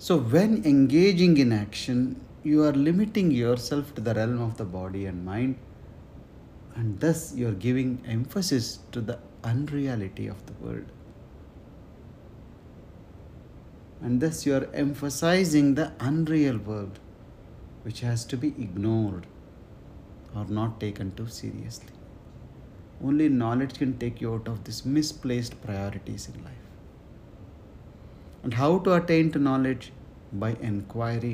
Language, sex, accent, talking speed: English, male, Indian, 130 wpm